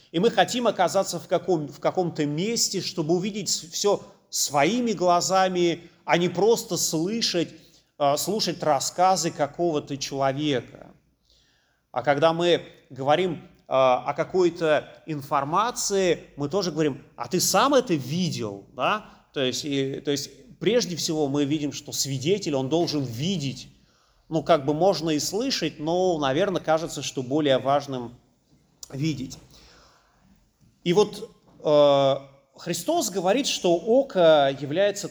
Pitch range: 145-190 Hz